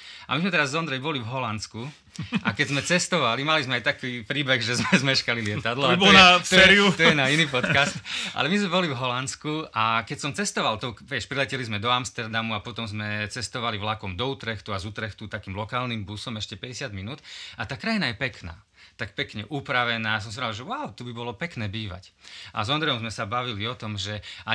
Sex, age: male, 30-49